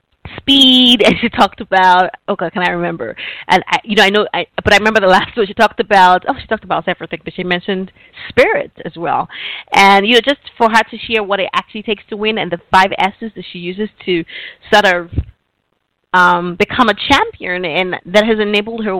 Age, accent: 20-39, American